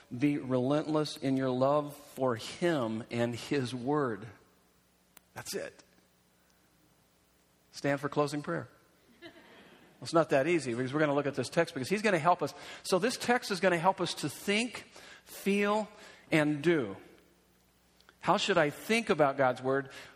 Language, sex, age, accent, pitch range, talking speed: English, male, 50-69, American, 135-170 Hz, 160 wpm